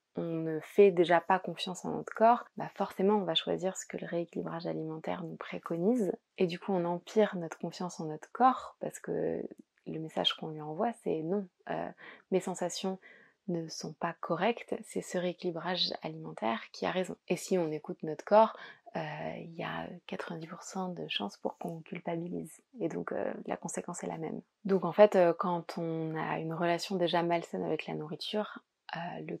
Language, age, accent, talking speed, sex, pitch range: French, 20-39, French, 190 wpm, female, 165-205 Hz